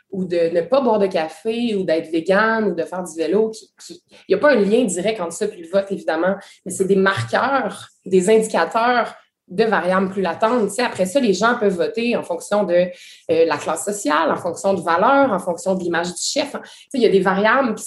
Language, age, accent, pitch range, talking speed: French, 20-39, Canadian, 175-230 Hz, 225 wpm